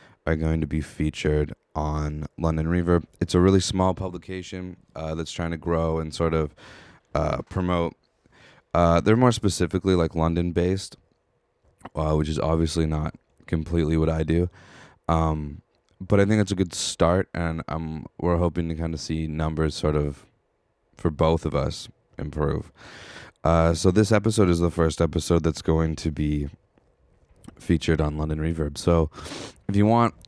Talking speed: 160 wpm